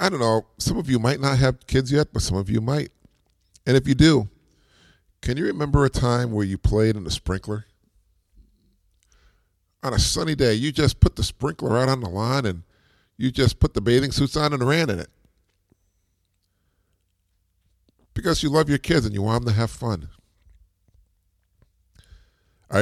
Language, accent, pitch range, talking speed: English, American, 90-120 Hz, 180 wpm